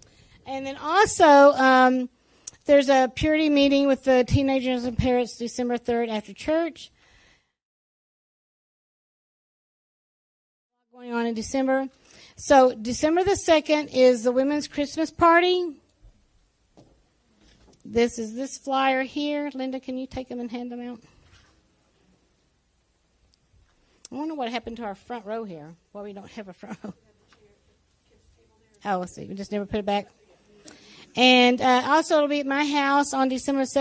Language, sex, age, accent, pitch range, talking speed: English, female, 50-69, American, 230-275 Hz, 145 wpm